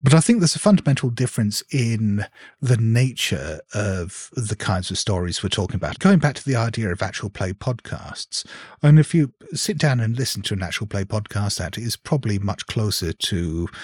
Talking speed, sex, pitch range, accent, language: 195 wpm, male, 95-125 Hz, British, English